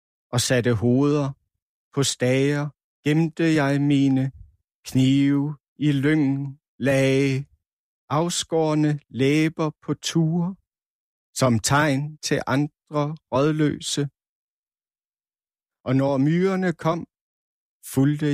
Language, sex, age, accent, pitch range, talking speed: Danish, male, 60-79, native, 125-145 Hz, 85 wpm